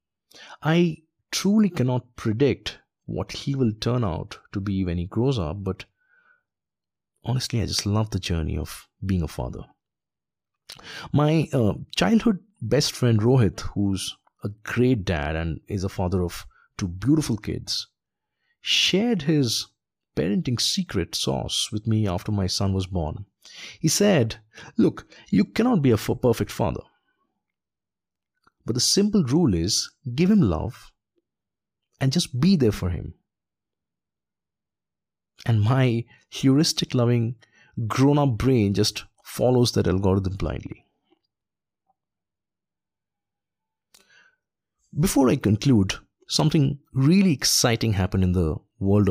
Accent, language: Indian, English